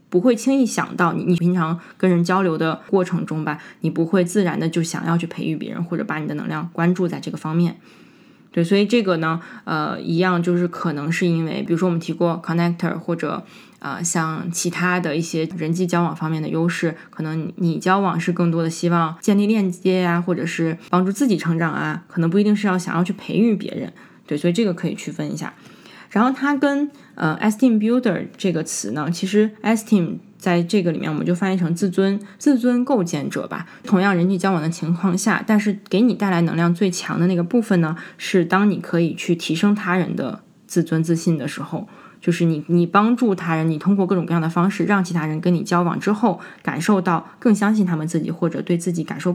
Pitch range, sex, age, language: 170-200 Hz, female, 20-39, Chinese